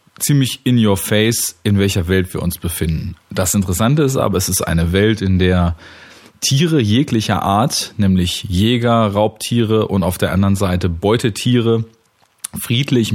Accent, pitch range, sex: German, 95-115 Hz, male